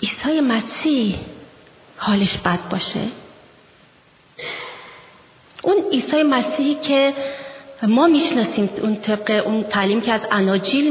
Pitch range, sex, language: 195-250 Hz, female, Persian